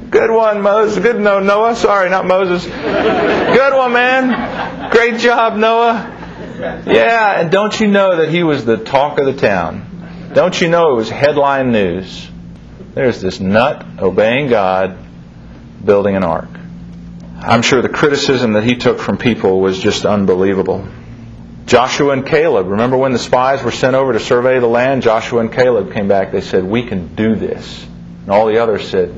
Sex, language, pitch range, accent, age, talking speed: male, English, 95-155 Hz, American, 40-59, 175 wpm